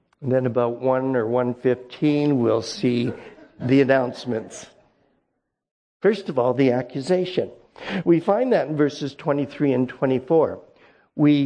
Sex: male